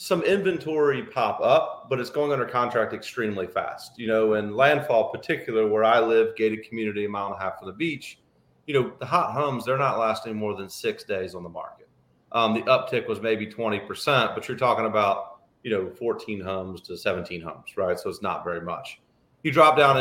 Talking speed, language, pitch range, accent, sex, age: 210 wpm, English, 110-140 Hz, American, male, 30-49